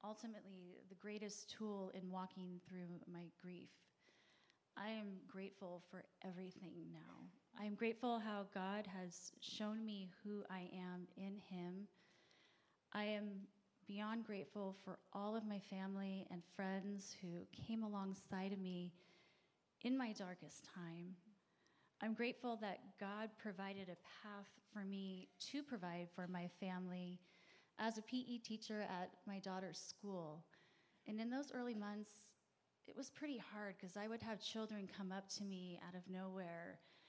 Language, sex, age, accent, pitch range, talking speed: English, female, 30-49, American, 185-220 Hz, 145 wpm